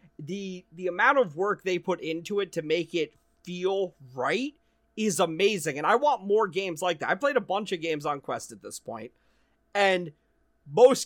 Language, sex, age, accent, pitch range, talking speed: English, male, 30-49, American, 150-200 Hz, 195 wpm